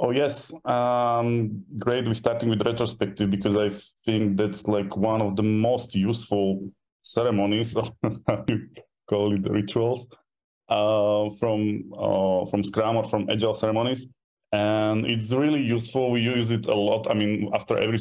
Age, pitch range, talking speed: 20-39, 100-115 Hz, 160 wpm